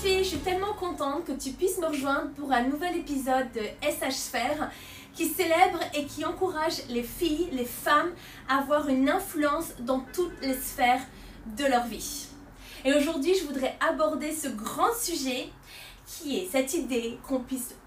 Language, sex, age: French, female, 20-39